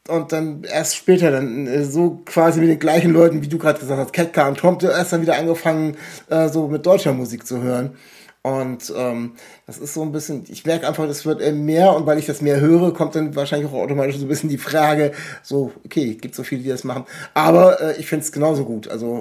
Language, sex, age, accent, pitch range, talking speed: German, male, 60-79, German, 145-170 Hz, 235 wpm